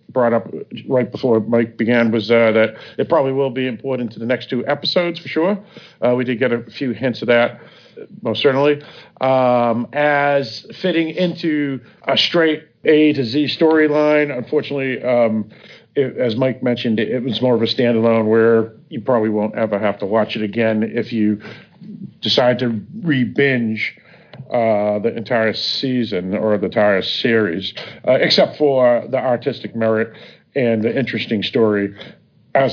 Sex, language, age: male, English, 50-69